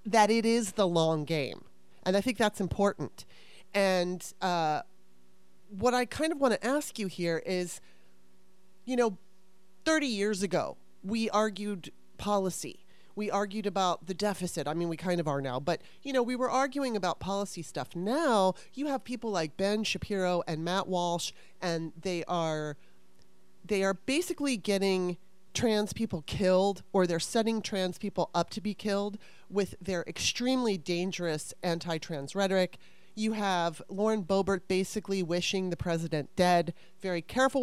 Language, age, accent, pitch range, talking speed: English, 30-49, American, 170-215 Hz, 155 wpm